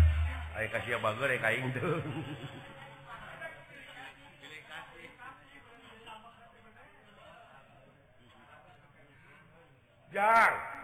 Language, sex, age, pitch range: Indonesian, male, 50-69, 115-160 Hz